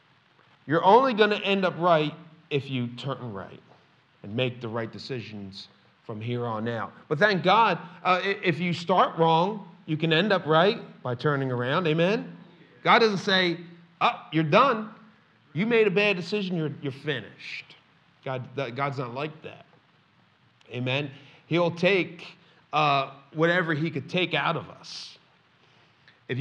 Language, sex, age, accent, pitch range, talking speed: English, male, 40-59, American, 135-190 Hz, 155 wpm